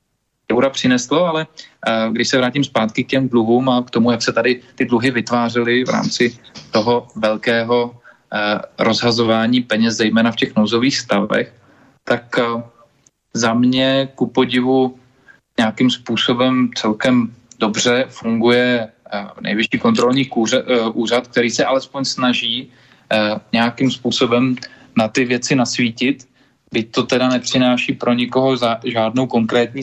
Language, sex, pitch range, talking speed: Czech, male, 115-130 Hz, 125 wpm